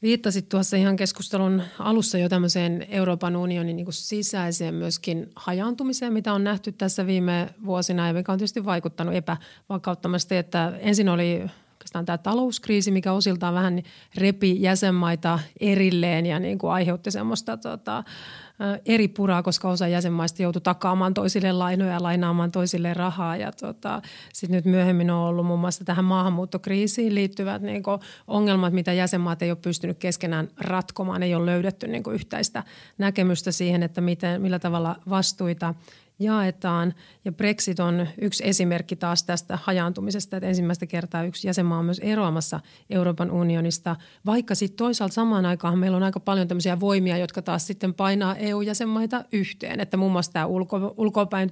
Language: Finnish